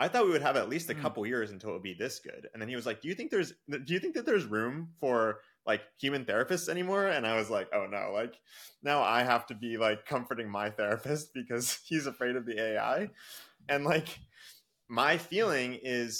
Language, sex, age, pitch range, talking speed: English, male, 20-39, 100-145 Hz, 230 wpm